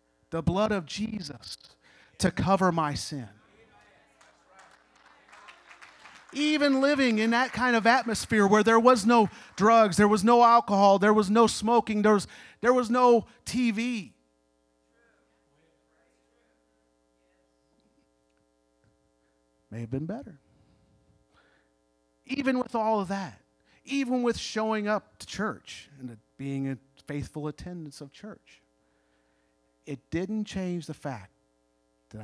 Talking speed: 115 wpm